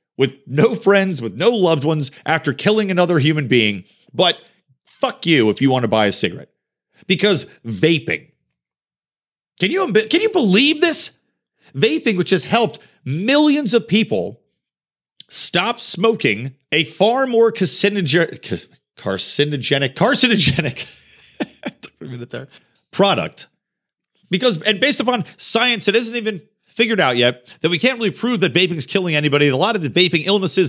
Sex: male